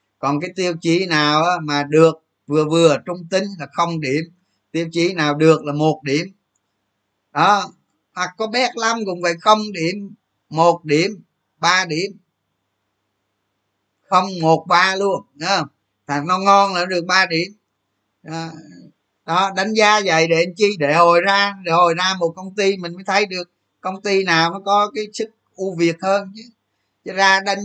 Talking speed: 175 wpm